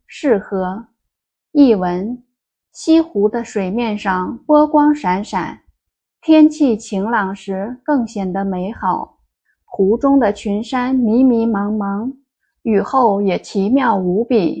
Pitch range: 205-270 Hz